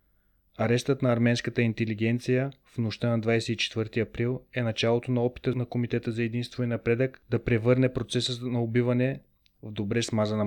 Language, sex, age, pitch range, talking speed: Bulgarian, male, 30-49, 110-125 Hz, 155 wpm